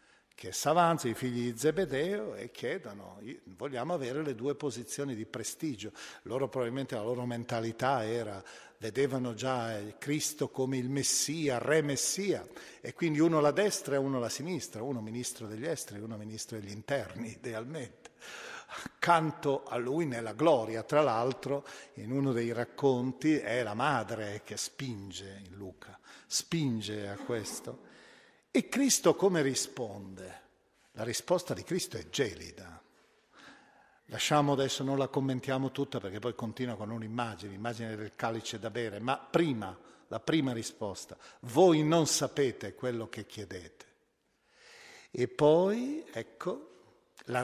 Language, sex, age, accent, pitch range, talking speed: Italian, male, 50-69, native, 110-145 Hz, 140 wpm